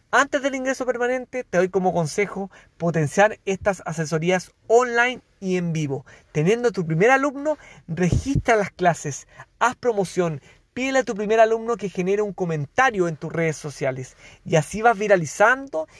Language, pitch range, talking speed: Spanish, 160-230 Hz, 155 wpm